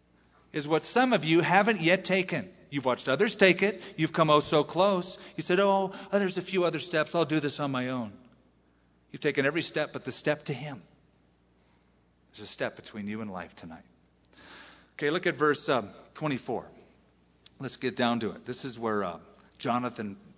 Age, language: 40-59, English